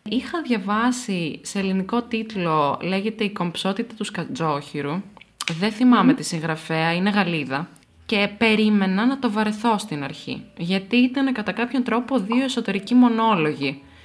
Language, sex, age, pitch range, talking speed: Greek, female, 20-39, 165-235 Hz, 130 wpm